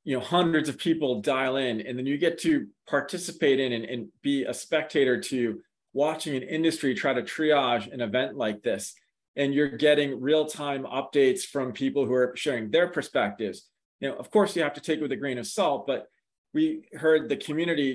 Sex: male